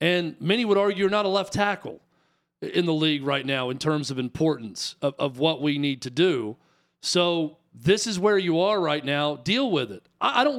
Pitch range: 160-205 Hz